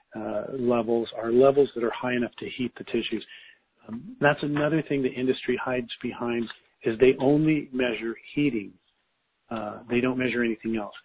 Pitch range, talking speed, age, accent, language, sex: 115-135 Hz, 170 wpm, 40-59, American, English, male